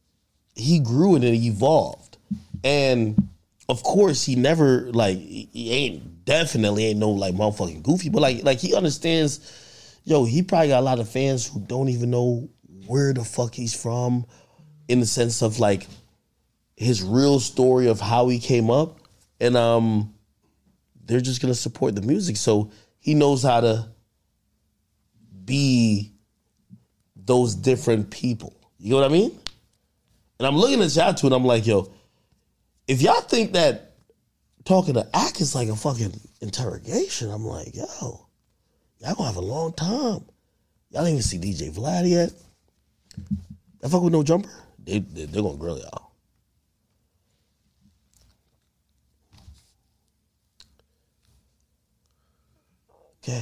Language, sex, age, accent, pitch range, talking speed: English, male, 20-39, American, 105-135 Hz, 140 wpm